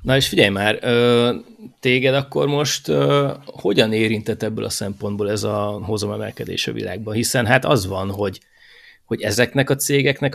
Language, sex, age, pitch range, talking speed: Hungarian, male, 30-49, 100-135 Hz, 155 wpm